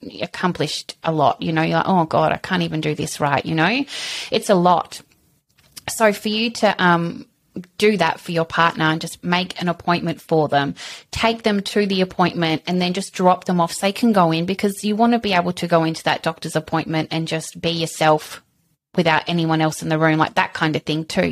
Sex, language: female, English